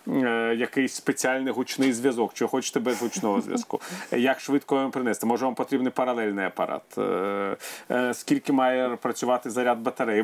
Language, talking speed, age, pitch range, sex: Ukrainian, 135 wpm, 40-59, 120-140 Hz, male